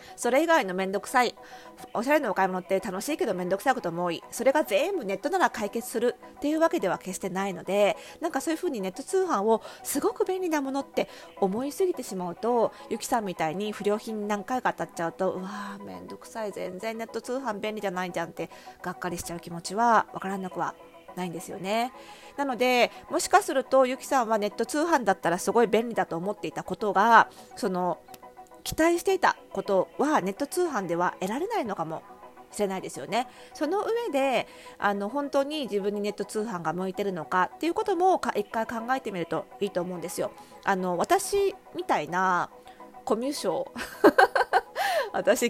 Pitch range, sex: 185-270 Hz, female